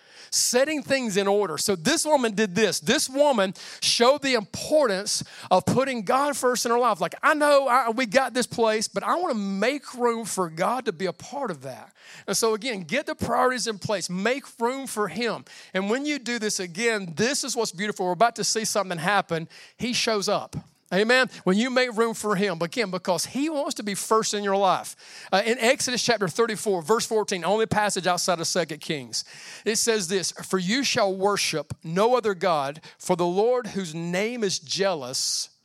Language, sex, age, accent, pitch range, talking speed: English, male, 40-59, American, 190-240 Hz, 200 wpm